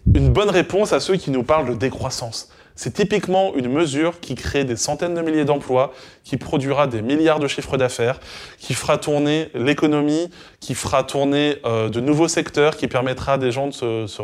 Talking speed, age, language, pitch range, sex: 200 wpm, 20-39, French, 120-145 Hz, male